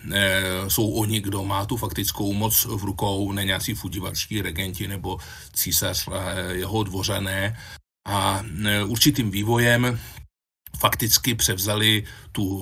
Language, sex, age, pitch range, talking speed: Slovak, male, 40-59, 95-110 Hz, 110 wpm